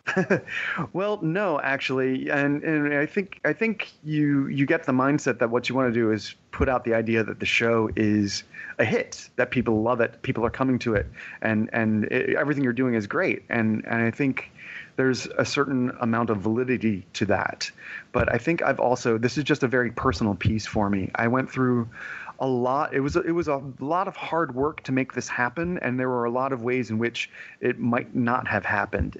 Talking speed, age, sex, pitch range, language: 220 wpm, 30-49, male, 115-145 Hz, English